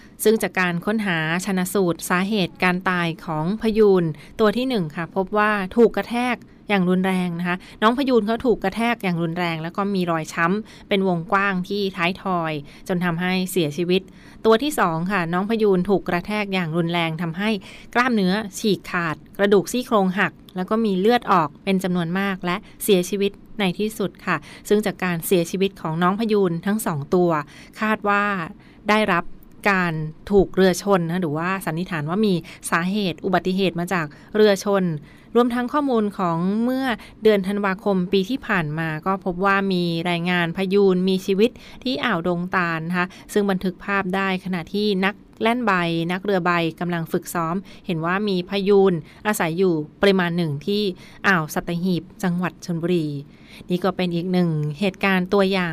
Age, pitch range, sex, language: 20-39, 175-205 Hz, female, Thai